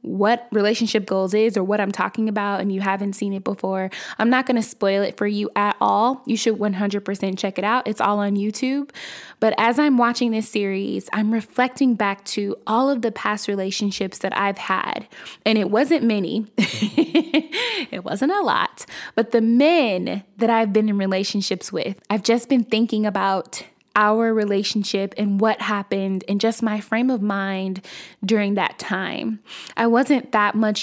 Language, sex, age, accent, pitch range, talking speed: English, female, 10-29, American, 200-235 Hz, 180 wpm